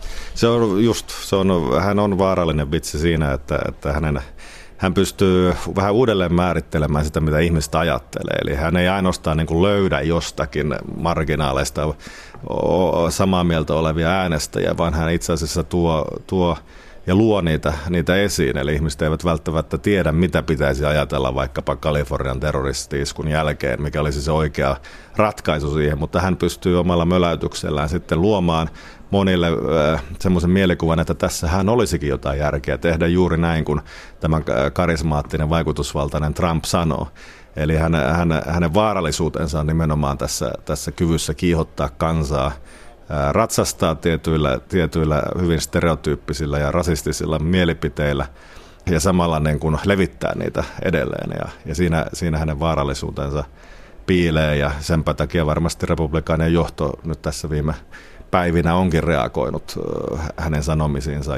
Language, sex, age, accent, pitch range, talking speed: Finnish, male, 40-59, native, 75-85 Hz, 130 wpm